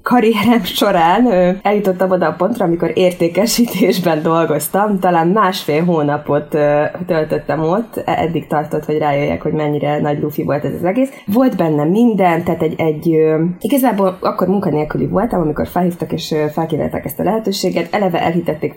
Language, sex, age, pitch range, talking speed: Hungarian, female, 20-39, 150-185 Hz, 145 wpm